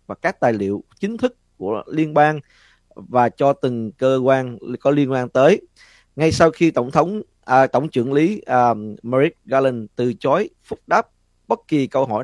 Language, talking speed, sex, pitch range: Vietnamese, 190 wpm, male, 110-150 Hz